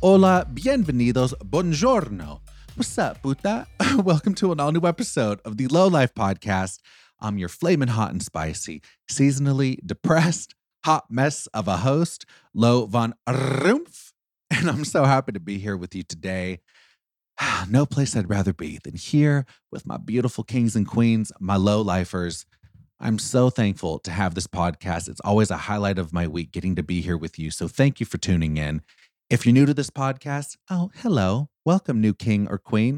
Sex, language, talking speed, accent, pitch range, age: male, English, 175 wpm, American, 95-135 Hz, 30-49